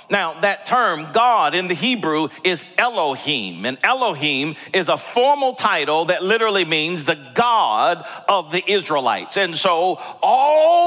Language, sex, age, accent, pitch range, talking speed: English, male, 40-59, American, 155-225 Hz, 145 wpm